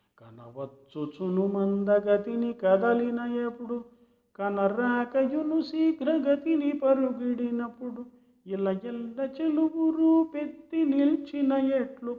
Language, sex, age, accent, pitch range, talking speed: Telugu, male, 50-69, native, 160-240 Hz, 65 wpm